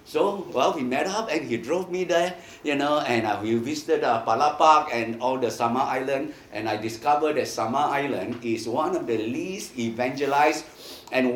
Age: 60-79